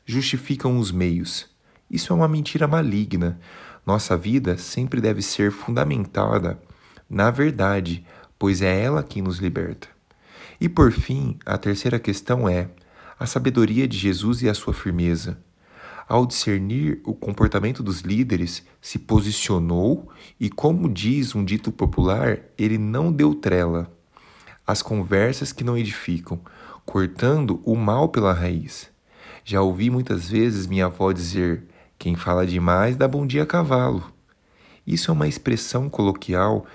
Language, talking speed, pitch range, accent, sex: Portuguese, 140 wpm, 95-130 Hz, Brazilian, male